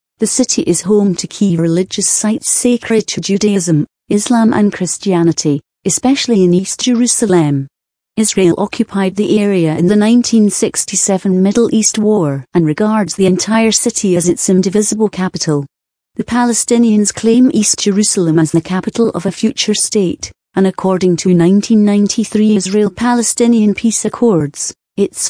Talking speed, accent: 135 wpm, British